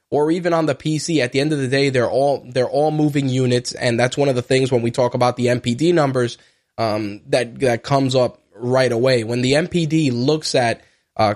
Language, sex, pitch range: English, male, 120-140 Hz